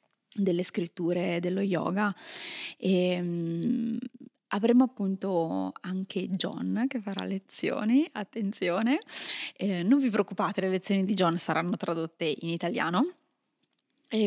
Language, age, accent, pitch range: Italian, 20-39, native, 180-235 Hz